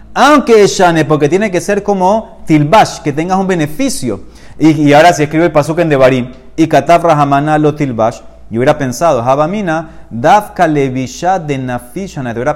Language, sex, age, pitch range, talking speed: Spanish, male, 30-49, 120-170 Hz, 170 wpm